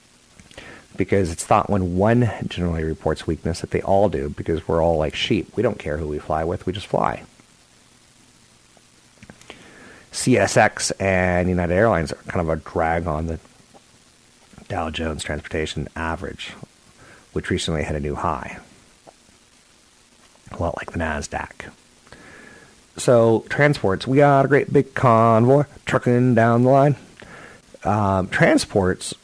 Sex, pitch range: male, 85-105 Hz